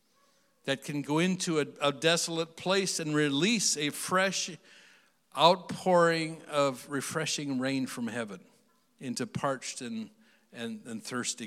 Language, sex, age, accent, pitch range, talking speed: English, male, 50-69, American, 120-180 Hz, 125 wpm